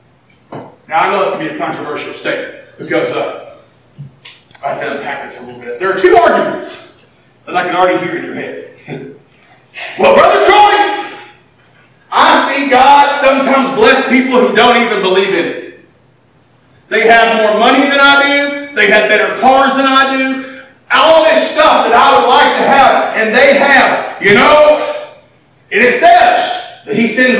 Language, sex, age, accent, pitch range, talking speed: English, male, 40-59, American, 215-295 Hz, 175 wpm